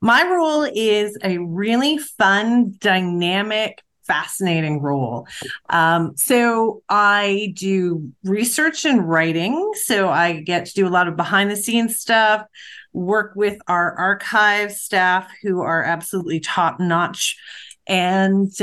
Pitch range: 180-215 Hz